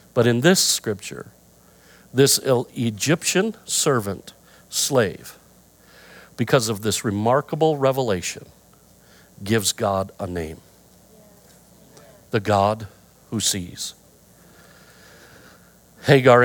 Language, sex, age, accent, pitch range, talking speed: English, male, 50-69, American, 100-125 Hz, 80 wpm